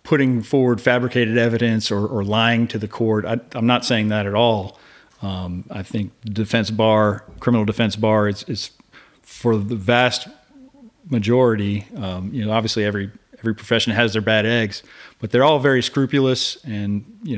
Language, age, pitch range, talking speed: English, 40-59, 105-120 Hz, 170 wpm